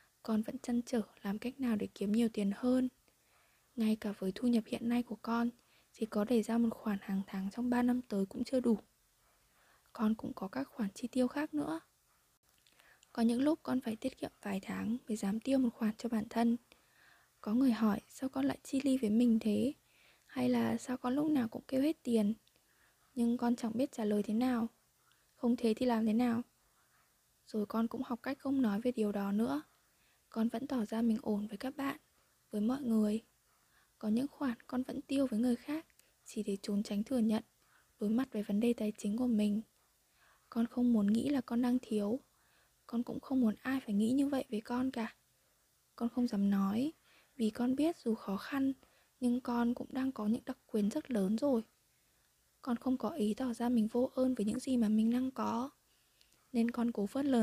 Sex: female